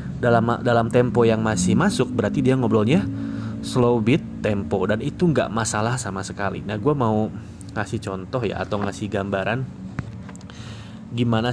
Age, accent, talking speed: 20-39, native, 145 wpm